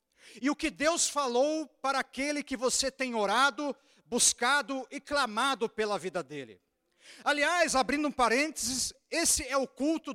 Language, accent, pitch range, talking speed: Portuguese, Brazilian, 275-320 Hz, 150 wpm